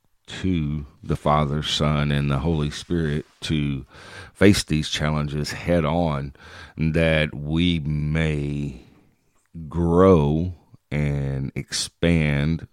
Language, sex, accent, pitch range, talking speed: English, male, American, 75-85 Hz, 95 wpm